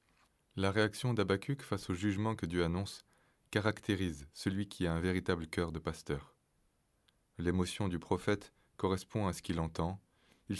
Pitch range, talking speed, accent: 85-100 Hz, 155 wpm, French